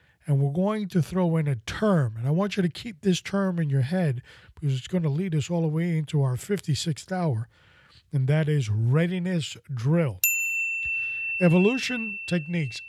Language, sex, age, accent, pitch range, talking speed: English, male, 50-69, American, 120-180 Hz, 180 wpm